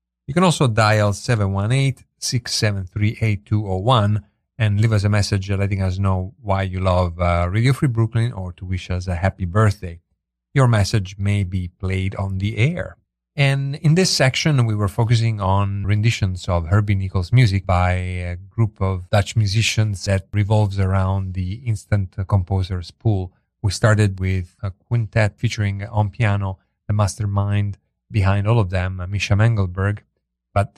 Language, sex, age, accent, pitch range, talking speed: English, male, 40-59, Italian, 95-110 Hz, 150 wpm